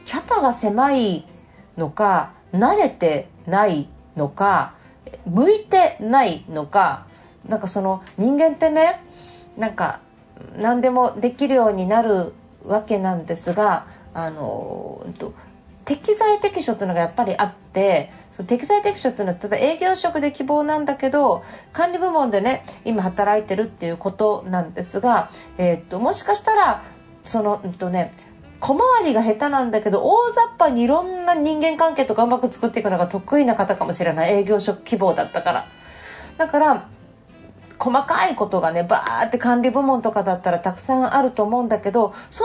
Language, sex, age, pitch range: Japanese, female, 40-59, 195-280 Hz